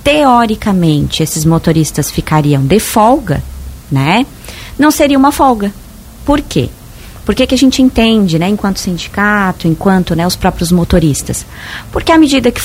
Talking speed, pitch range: 140 wpm, 165-255 Hz